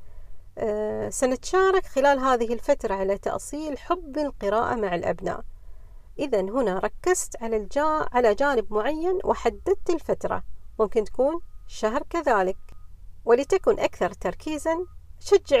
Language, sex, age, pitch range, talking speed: Arabic, female, 40-59, 195-290 Hz, 110 wpm